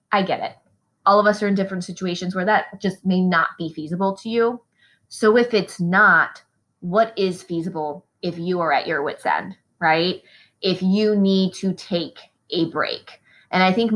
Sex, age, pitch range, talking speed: female, 20-39, 165-195 Hz, 190 wpm